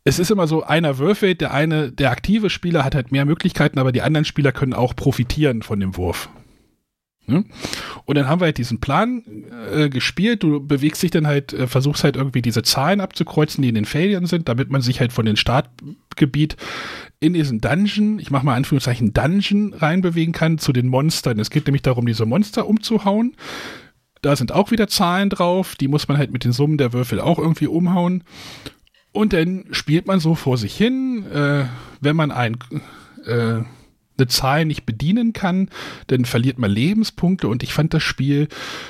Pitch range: 130-170 Hz